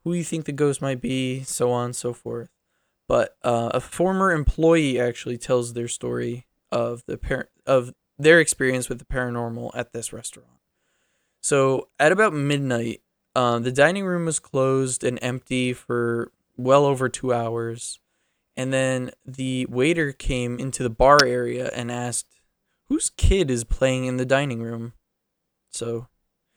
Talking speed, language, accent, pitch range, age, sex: 160 wpm, English, American, 120-140 Hz, 20-39, male